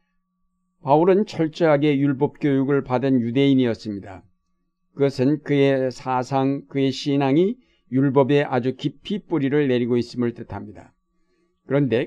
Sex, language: male, Korean